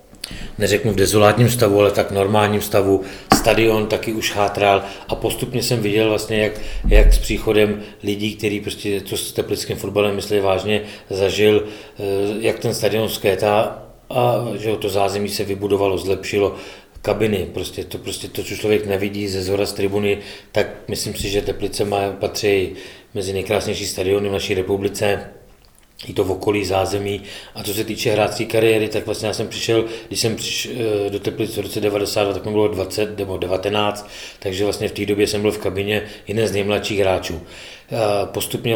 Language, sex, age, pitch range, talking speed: Czech, male, 40-59, 100-110 Hz, 170 wpm